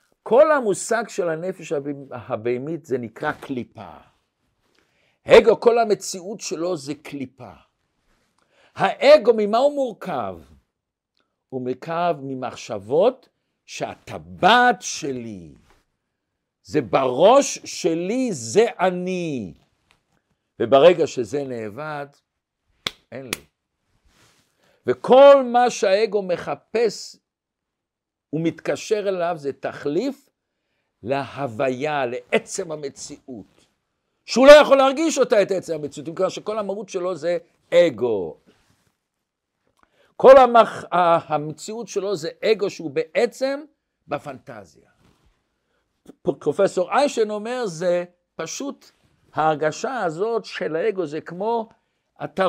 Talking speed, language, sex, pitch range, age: 90 wpm, Hebrew, male, 150-230 Hz, 60-79